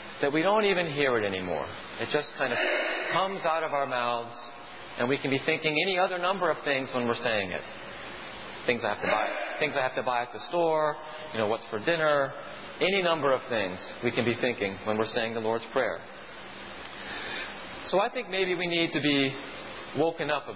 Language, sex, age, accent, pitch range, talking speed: English, male, 40-59, American, 125-155 Hz, 215 wpm